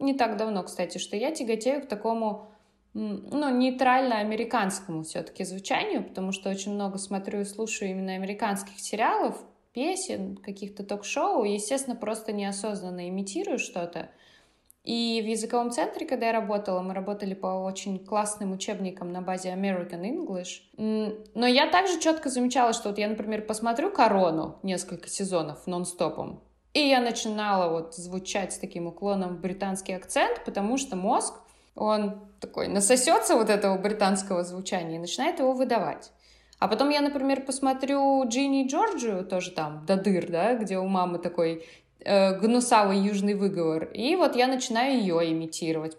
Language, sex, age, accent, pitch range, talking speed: Russian, female, 20-39, native, 185-235 Hz, 145 wpm